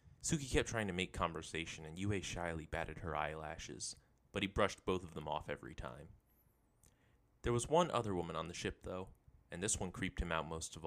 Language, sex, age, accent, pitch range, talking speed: English, male, 20-39, American, 80-110 Hz, 210 wpm